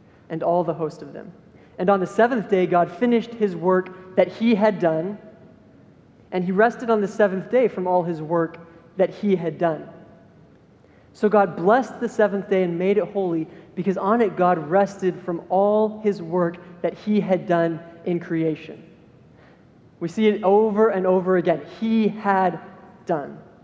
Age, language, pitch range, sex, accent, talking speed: 20-39, English, 170-205 Hz, male, American, 175 wpm